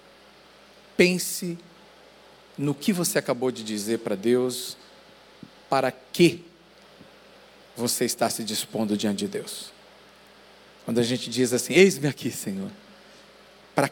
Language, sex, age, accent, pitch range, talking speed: Portuguese, male, 50-69, Brazilian, 125-180 Hz, 115 wpm